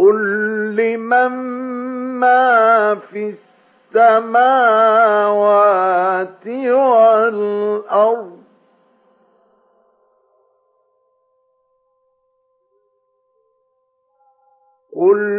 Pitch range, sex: 215-275 Hz, male